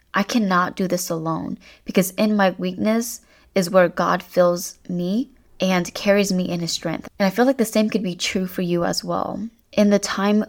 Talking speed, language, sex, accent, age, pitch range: 205 wpm, English, female, American, 20-39, 175-205 Hz